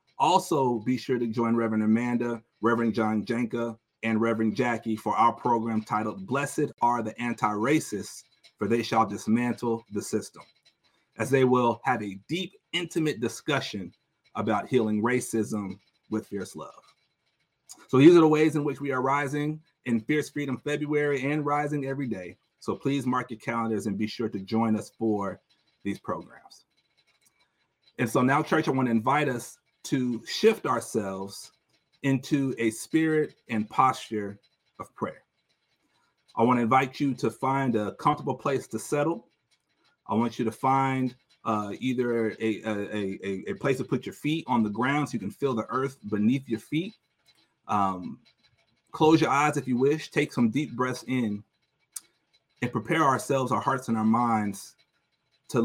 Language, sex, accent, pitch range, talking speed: English, male, American, 110-135 Hz, 160 wpm